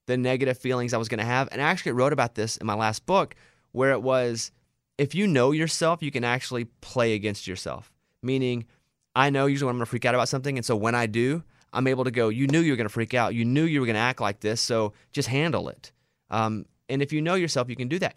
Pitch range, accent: 110-135 Hz, American